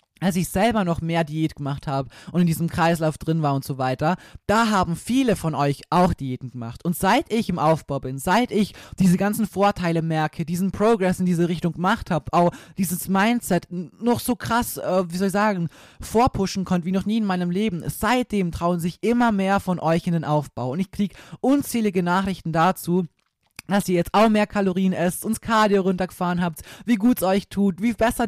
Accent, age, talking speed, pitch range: German, 20-39, 205 wpm, 165-210 Hz